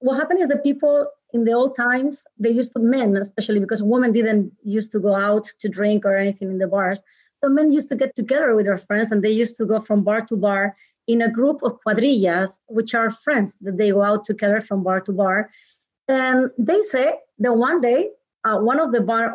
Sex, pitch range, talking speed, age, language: female, 210-260 Hz, 230 wpm, 30-49, English